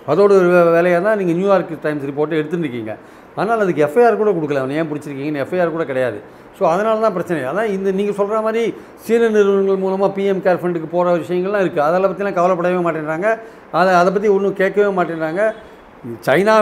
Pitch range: 170-215 Hz